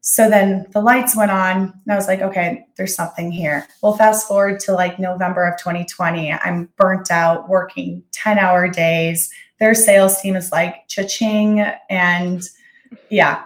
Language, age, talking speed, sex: English, 20-39, 165 wpm, female